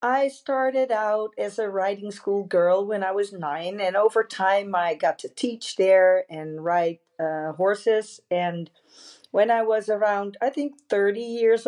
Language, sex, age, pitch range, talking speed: English, female, 40-59, 180-230 Hz, 170 wpm